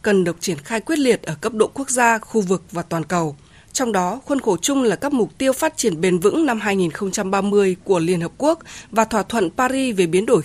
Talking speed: 240 wpm